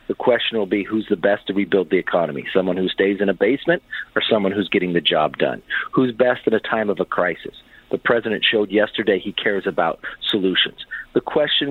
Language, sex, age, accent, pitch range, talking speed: English, male, 50-69, American, 110-165 Hz, 215 wpm